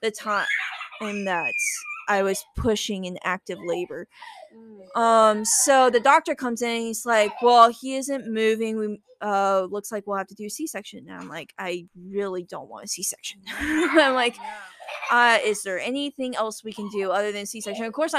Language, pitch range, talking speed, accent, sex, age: English, 205-260 Hz, 190 wpm, American, female, 10-29